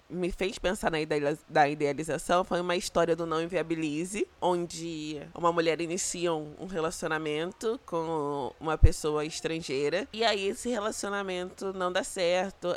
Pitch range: 160-200 Hz